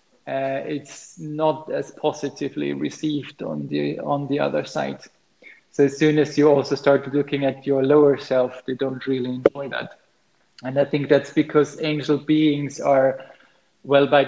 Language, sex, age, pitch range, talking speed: English, male, 20-39, 135-150 Hz, 160 wpm